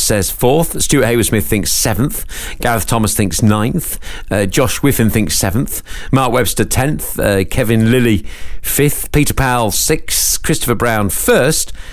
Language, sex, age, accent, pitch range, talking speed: English, male, 40-59, British, 100-135 Hz, 140 wpm